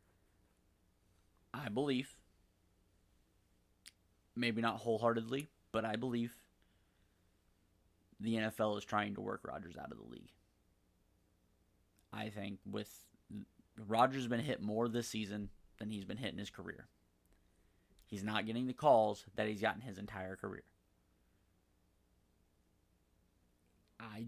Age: 30-49